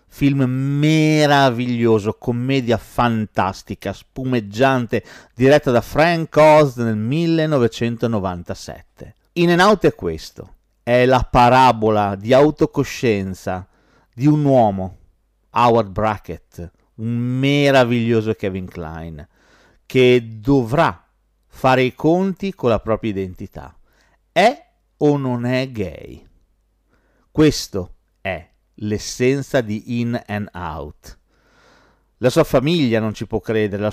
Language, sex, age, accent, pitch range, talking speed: Italian, male, 50-69, native, 105-140 Hz, 105 wpm